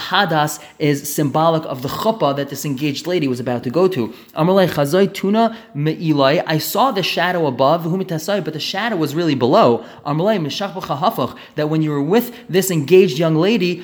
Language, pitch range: English, 150-190 Hz